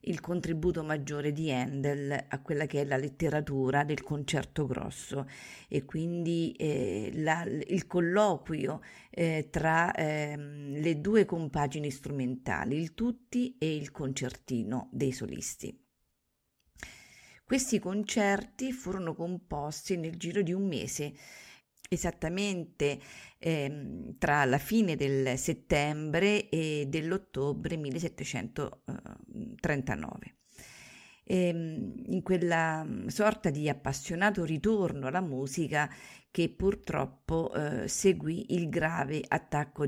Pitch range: 145-190 Hz